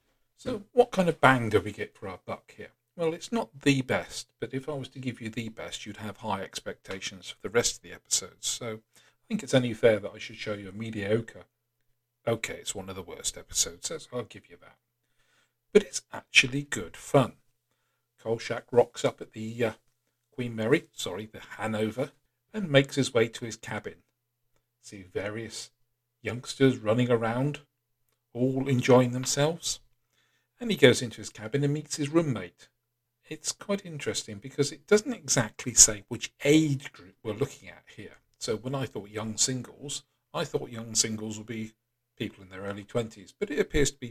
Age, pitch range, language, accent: 50-69, 110-140 Hz, English, British